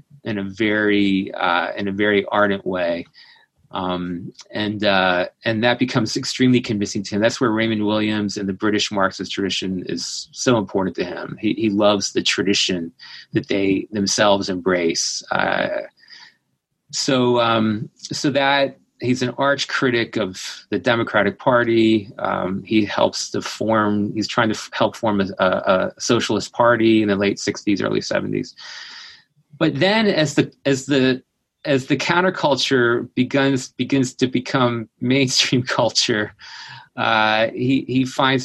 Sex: male